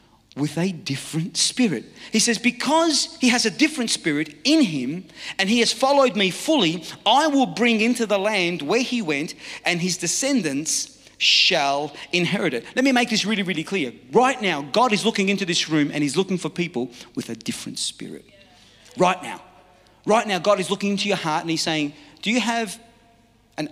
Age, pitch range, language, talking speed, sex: 40-59, 160-225 Hz, English, 190 wpm, male